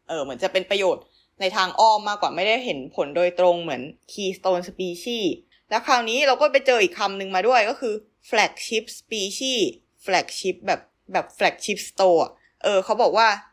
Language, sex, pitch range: Thai, female, 185-235 Hz